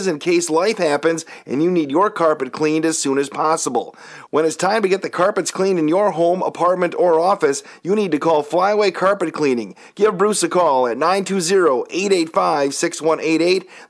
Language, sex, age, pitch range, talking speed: English, male, 40-59, 150-185 Hz, 175 wpm